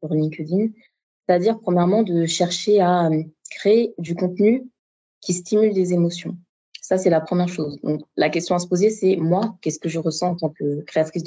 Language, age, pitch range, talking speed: French, 20-39, 160-190 Hz, 185 wpm